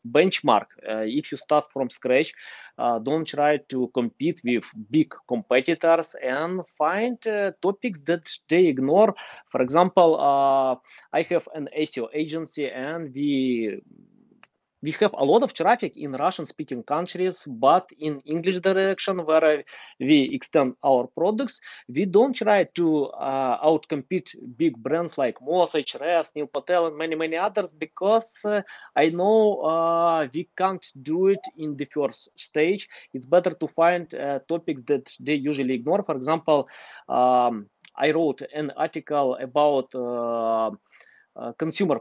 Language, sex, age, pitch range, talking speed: English, male, 20-39, 145-185 Hz, 145 wpm